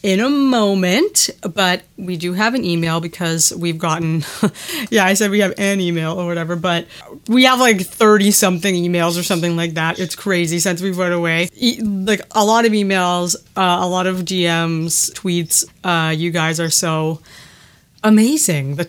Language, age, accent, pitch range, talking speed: English, 30-49, American, 165-200 Hz, 180 wpm